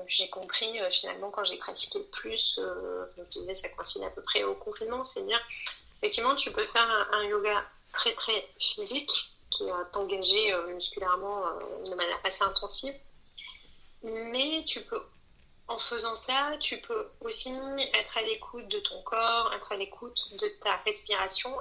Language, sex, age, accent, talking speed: French, female, 30-49, French, 170 wpm